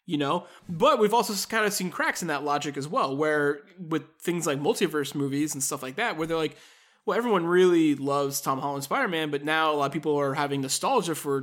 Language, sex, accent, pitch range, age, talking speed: English, male, American, 140-175 Hz, 20-39, 230 wpm